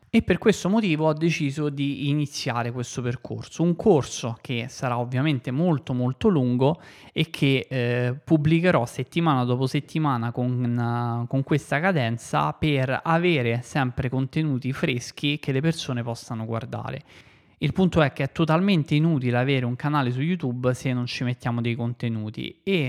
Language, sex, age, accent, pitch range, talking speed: Italian, male, 20-39, native, 125-150 Hz, 155 wpm